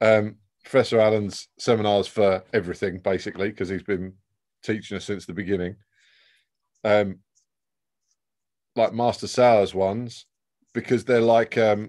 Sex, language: male, English